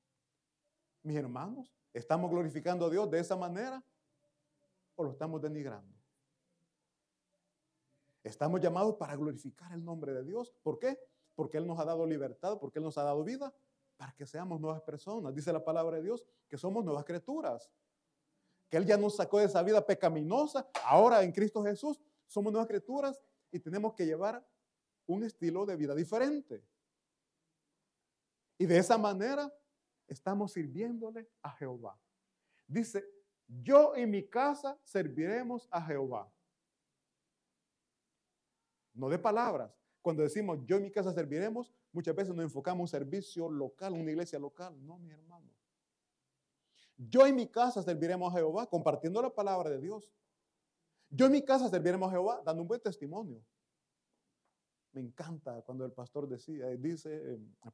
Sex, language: male, Italian